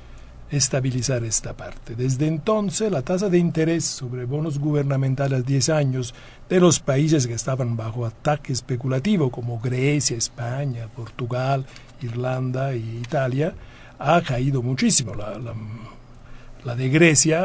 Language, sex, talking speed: Spanish, male, 125 wpm